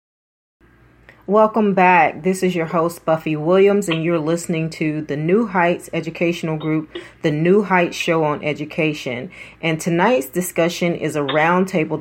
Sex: female